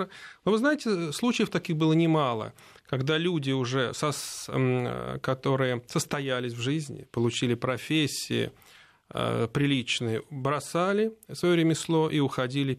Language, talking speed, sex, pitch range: Russian, 115 wpm, male, 125-175 Hz